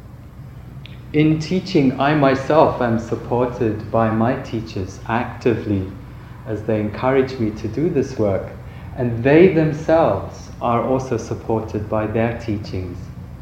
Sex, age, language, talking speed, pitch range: male, 30-49, English, 120 wpm, 110-130 Hz